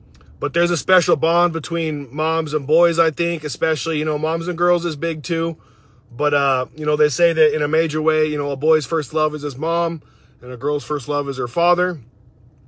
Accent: American